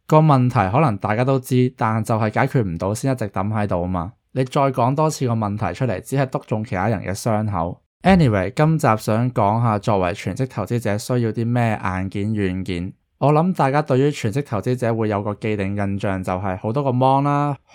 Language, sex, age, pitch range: Chinese, male, 20-39, 100-130 Hz